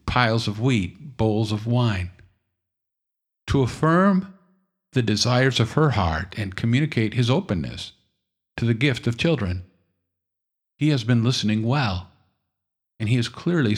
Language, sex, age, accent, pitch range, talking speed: English, male, 50-69, American, 100-130 Hz, 135 wpm